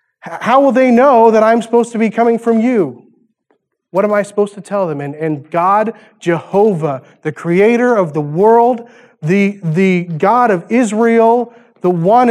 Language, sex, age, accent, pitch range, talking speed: English, male, 30-49, American, 145-195 Hz, 170 wpm